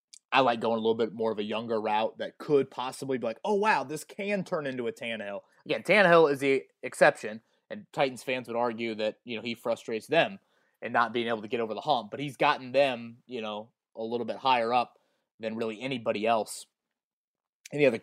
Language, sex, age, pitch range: English, male, 20-39, 115-145 Hz